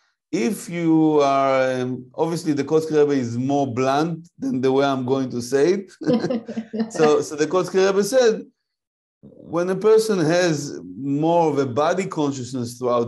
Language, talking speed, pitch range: English, 150 wpm, 130-165 Hz